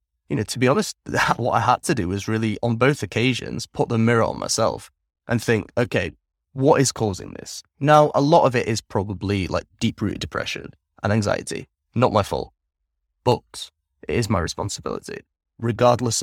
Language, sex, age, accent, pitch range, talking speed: English, male, 20-39, British, 100-125 Hz, 180 wpm